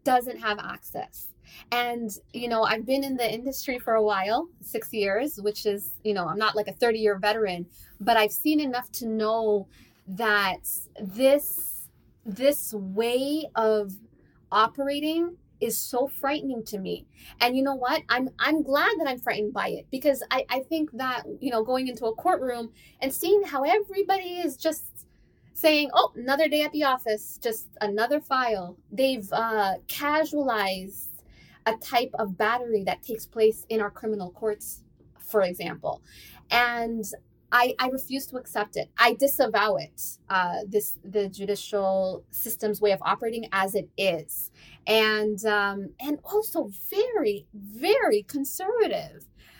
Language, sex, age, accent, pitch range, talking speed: English, female, 20-39, American, 210-280 Hz, 155 wpm